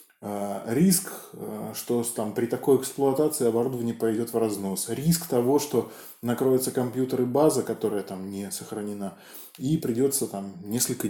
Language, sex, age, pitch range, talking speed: Russian, male, 20-39, 110-165 Hz, 130 wpm